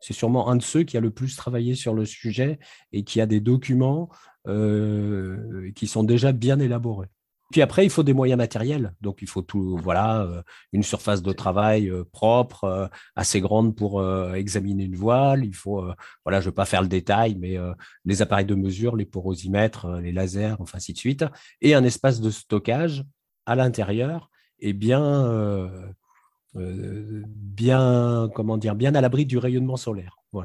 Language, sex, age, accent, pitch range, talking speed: French, male, 40-59, French, 100-135 Hz, 180 wpm